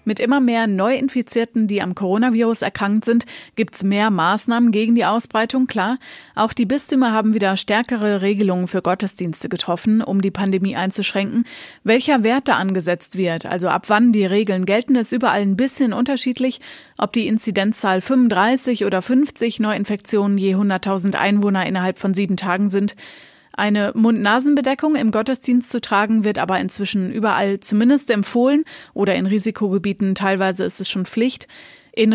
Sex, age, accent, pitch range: female, 30-49, German, 195-240 Hz